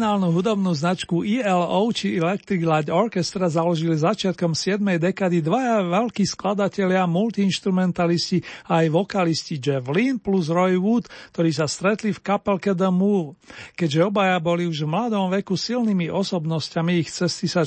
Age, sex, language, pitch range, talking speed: 40-59, male, Slovak, 165-200 Hz, 145 wpm